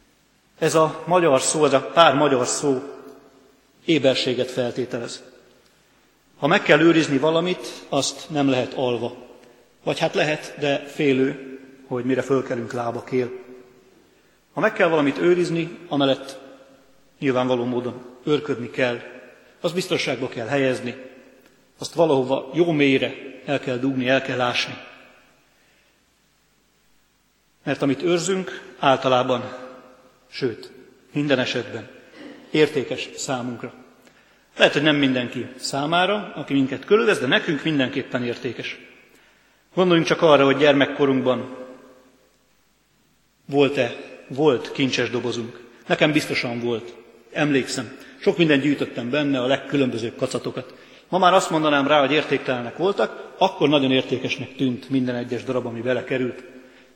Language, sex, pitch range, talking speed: Hungarian, male, 125-145 Hz, 120 wpm